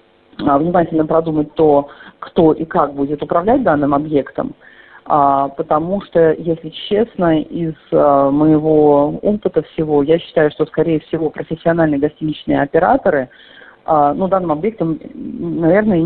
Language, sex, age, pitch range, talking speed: Russian, female, 40-59, 145-170 Hz, 110 wpm